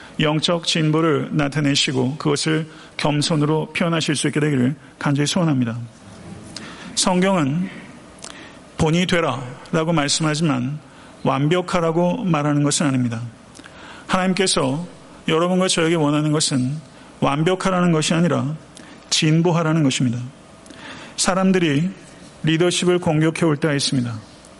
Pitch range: 145-170 Hz